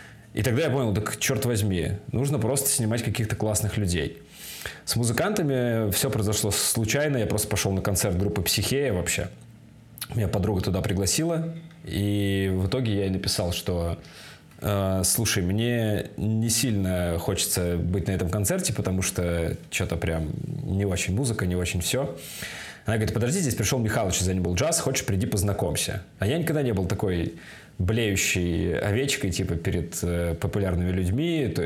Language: Russian